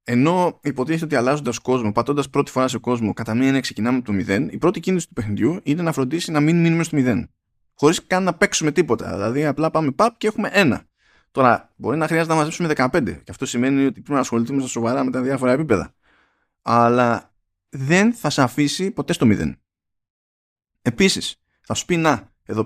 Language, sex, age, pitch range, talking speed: Greek, male, 20-39, 110-165 Hz, 200 wpm